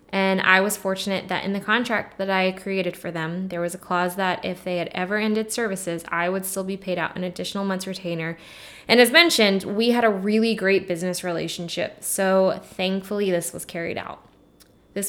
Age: 10-29